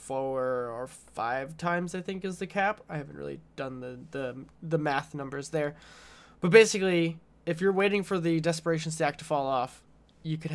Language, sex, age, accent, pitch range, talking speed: English, male, 20-39, American, 135-170 Hz, 190 wpm